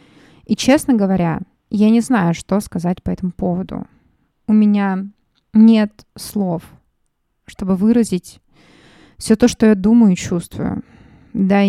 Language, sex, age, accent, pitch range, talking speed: Russian, female, 20-39, native, 190-230 Hz, 130 wpm